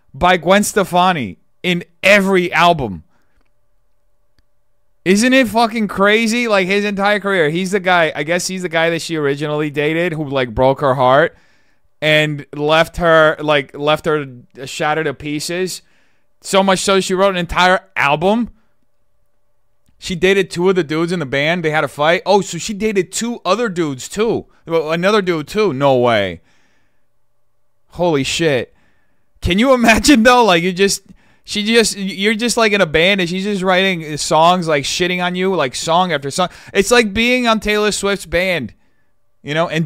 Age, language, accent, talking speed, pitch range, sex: 20-39, English, American, 170 wpm, 150-200 Hz, male